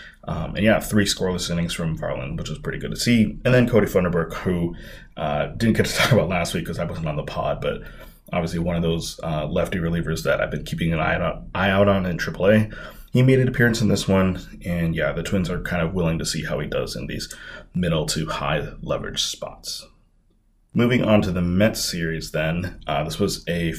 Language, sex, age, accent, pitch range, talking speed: English, male, 30-49, American, 85-110 Hz, 220 wpm